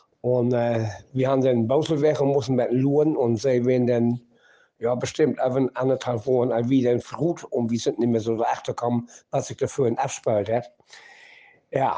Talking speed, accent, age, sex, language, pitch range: 190 wpm, German, 60-79, male, German, 120-140 Hz